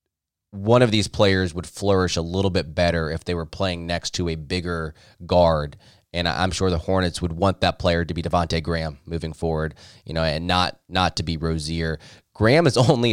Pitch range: 85-95 Hz